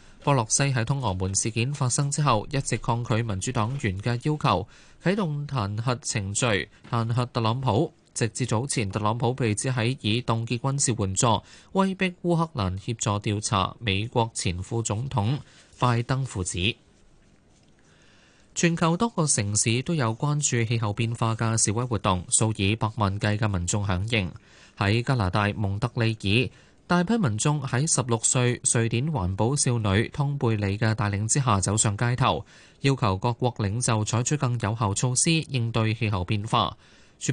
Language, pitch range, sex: Chinese, 105-135 Hz, male